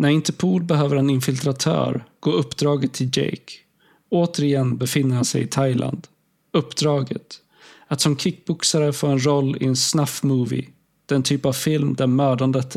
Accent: native